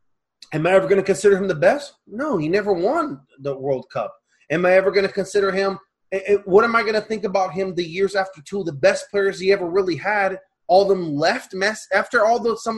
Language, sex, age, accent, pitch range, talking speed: English, male, 30-49, American, 175-215 Hz, 255 wpm